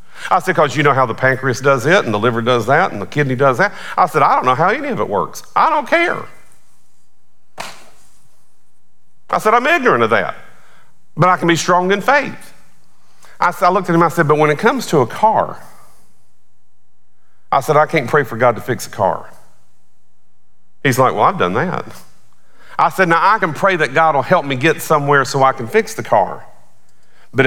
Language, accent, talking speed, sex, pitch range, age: English, American, 210 wpm, male, 140-185 Hz, 50-69